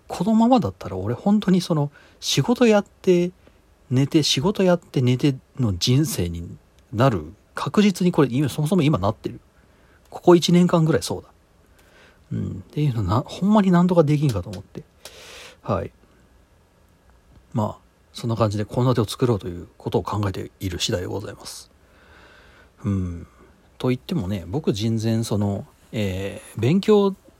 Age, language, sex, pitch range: 40-59, Japanese, male, 95-140 Hz